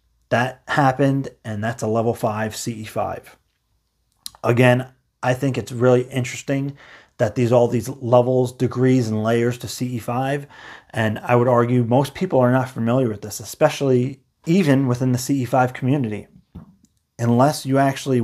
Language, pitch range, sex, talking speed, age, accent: English, 115-130 Hz, male, 145 wpm, 30-49, American